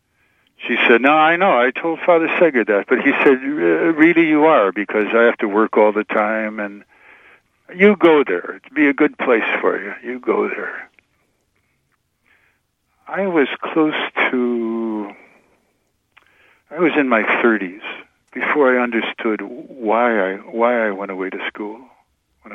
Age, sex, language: 60-79, male, English